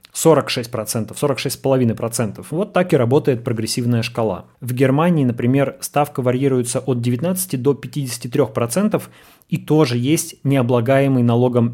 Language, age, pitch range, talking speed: Russian, 20-39, 125-155 Hz, 130 wpm